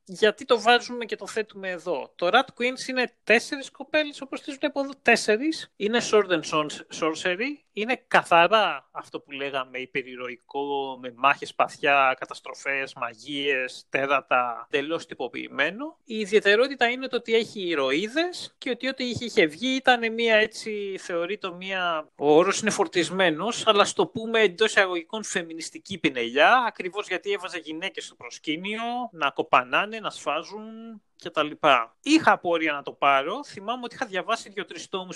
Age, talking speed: 30-49, 150 wpm